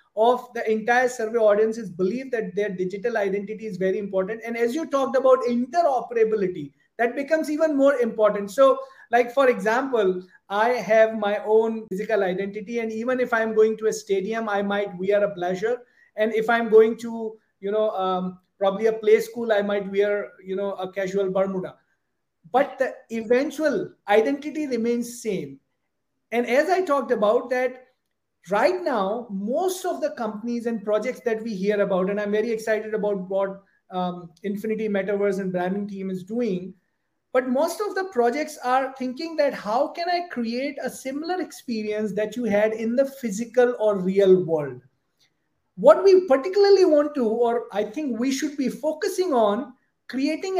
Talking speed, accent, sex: 170 wpm, Indian, male